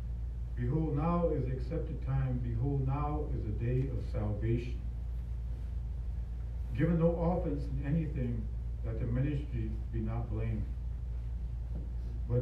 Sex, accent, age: male, American, 50-69